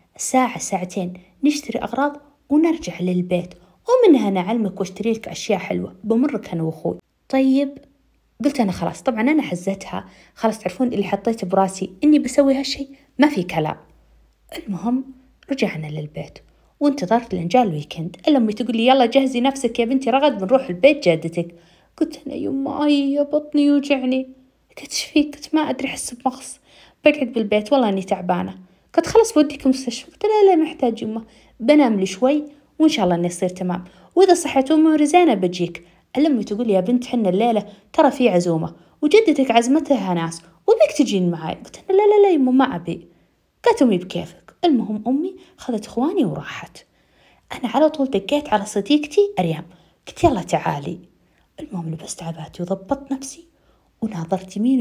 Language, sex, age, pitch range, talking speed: Arabic, female, 30-49, 190-290 Hz, 150 wpm